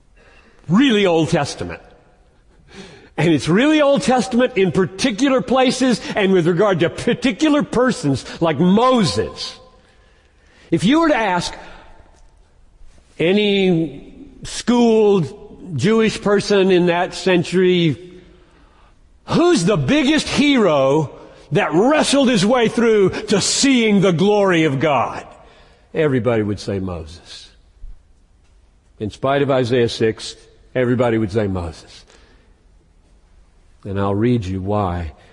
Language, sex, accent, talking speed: English, male, American, 110 wpm